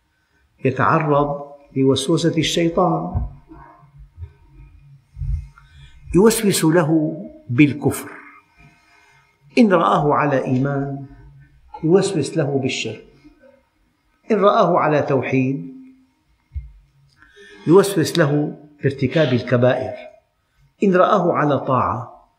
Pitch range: 120-155 Hz